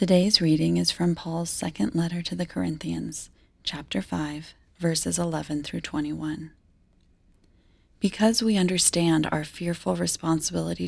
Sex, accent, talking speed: female, American, 120 wpm